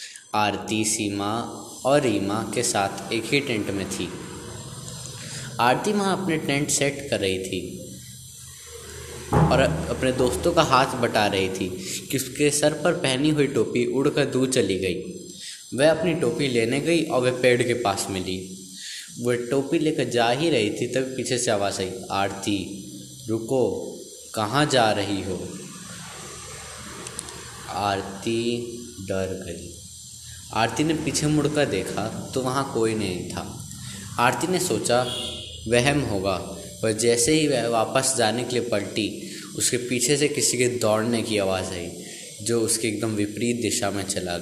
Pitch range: 100-130 Hz